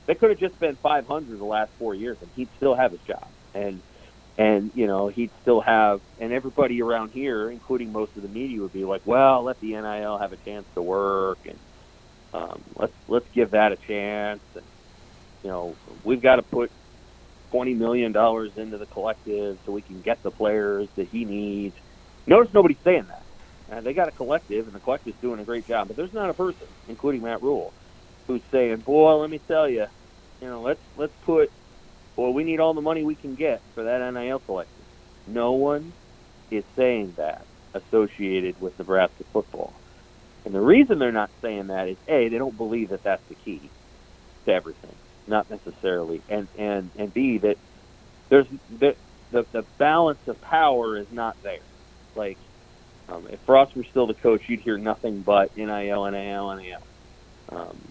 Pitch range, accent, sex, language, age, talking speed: 100-125 Hz, American, male, English, 40-59, 190 wpm